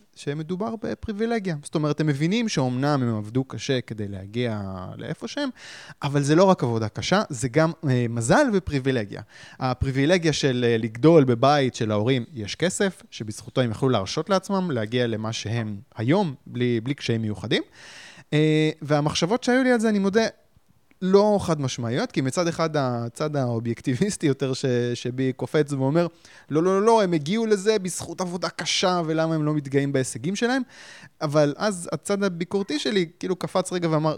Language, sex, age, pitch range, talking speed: Hebrew, male, 20-39, 125-175 Hz, 155 wpm